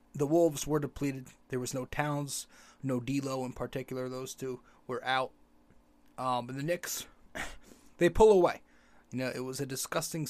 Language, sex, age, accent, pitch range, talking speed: English, male, 20-39, American, 125-150 Hz, 170 wpm